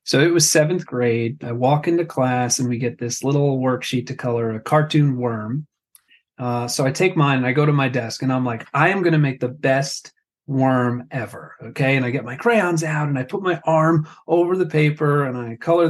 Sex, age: male, 30-49